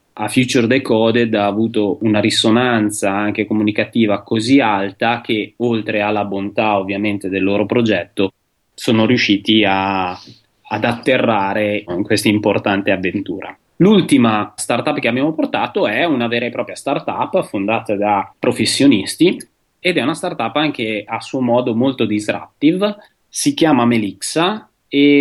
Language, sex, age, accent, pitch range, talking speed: Italian, male, 30-49, native, 105-130 Hz, 130 wpm